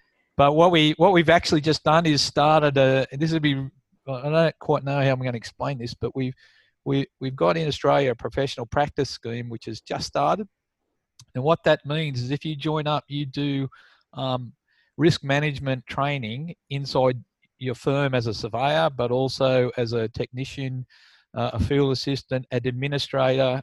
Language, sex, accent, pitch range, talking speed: English, male, Australian, 120-145 Hz, 185 wpm